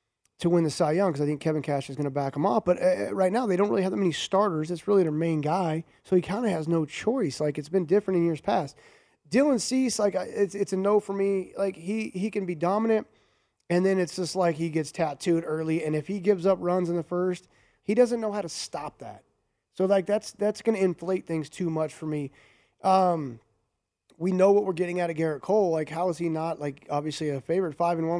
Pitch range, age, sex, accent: 155-190 Hz, 30-49, male, American